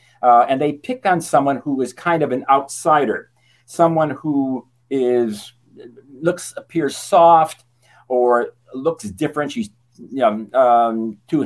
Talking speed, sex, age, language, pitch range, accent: 135 wpm, male, 50-69, English, 120-150 Hz, American